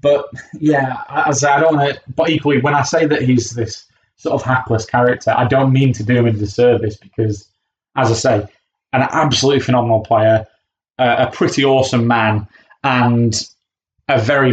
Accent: British